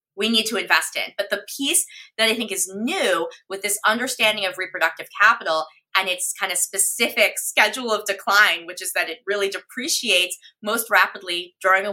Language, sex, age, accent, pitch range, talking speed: English, female, 20-39, American, 180-230 Hz, 185 wpm